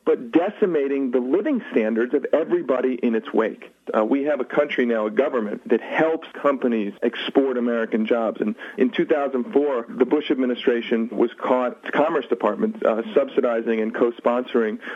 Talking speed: 155 wpm